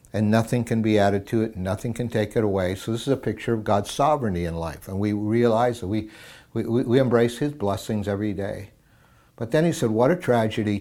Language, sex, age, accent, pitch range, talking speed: English, male, 60-79, American, 100-120 Hz, 220 wpm